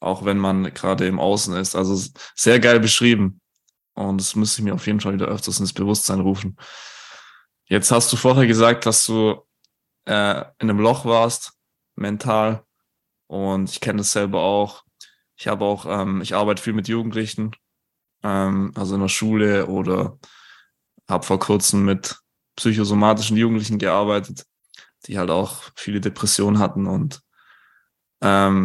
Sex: male